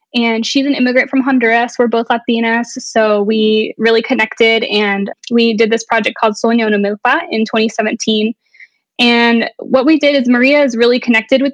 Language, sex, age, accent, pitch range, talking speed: English, female, 10-29, American, 220-270 Hz, 170 wpm